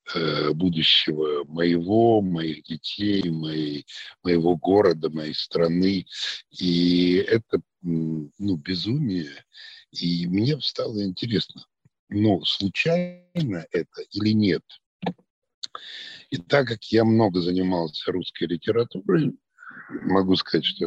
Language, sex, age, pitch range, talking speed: Ukrainian, male, 50-69, 85-115 Hz, 95 wpm